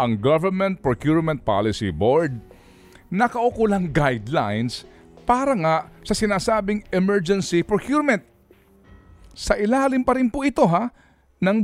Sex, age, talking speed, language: male, 50-69, 110 wpm, Filipino